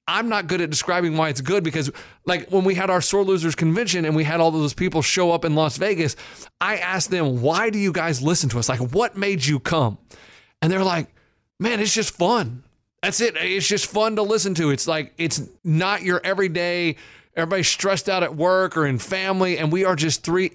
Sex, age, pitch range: male, 30-49, 150-190 Hz